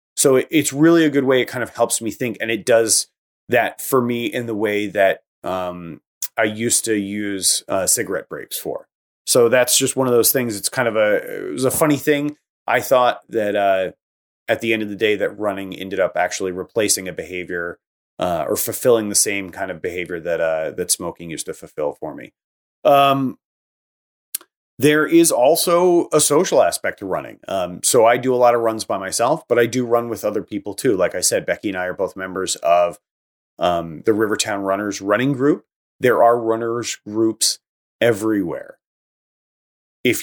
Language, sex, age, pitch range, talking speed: English, male, 30-49, 100-125 Hz, 195 wpm